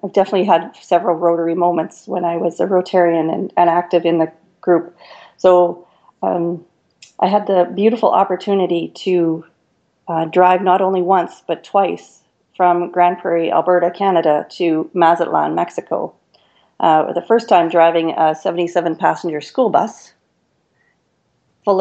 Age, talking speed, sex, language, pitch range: 40-59, 140 wpm, female, English, 170-190 Hz